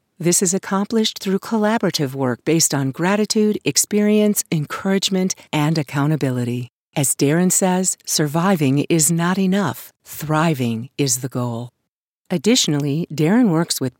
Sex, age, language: female, 50-69, English